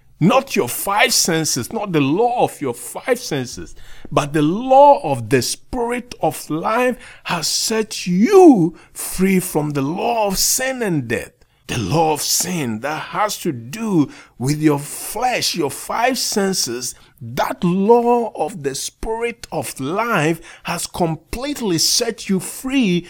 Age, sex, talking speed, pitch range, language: 50-69, male, 145 wpm, 150-225 Hz, English